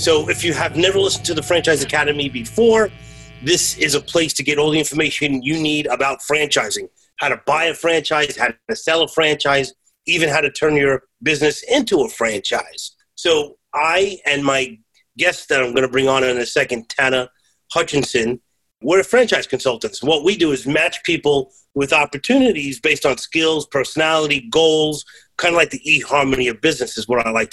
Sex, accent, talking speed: male, American, 185 wpm